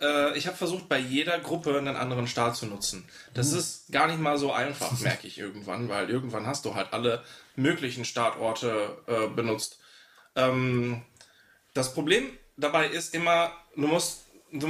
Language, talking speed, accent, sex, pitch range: German, 165 wpm, German, male, 125-165 Hz